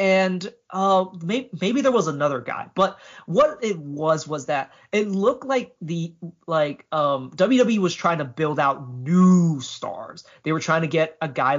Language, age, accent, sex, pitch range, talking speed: English, 30-49, American, male, 145-205 Hz, 185 wpm